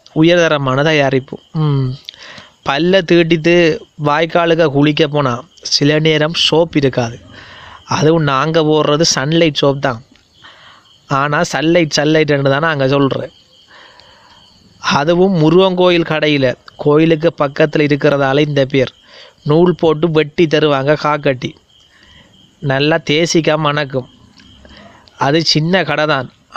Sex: male